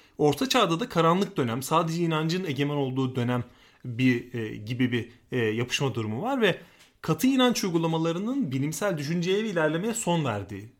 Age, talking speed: 30-49, 145 wpm